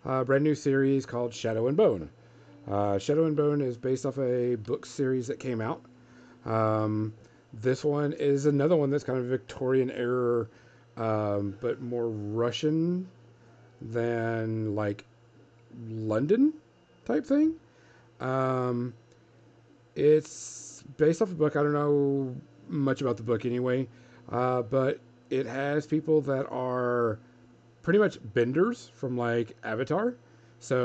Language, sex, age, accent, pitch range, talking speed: English, male, 40-59, American, 115-135 Hz, 135 wpm